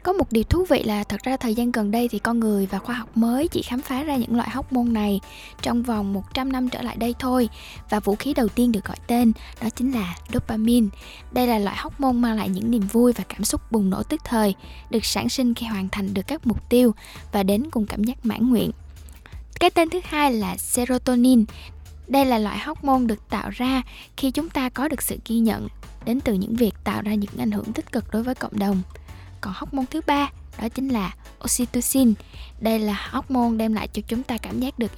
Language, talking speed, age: Vietnamese, 240 wpm, 10-29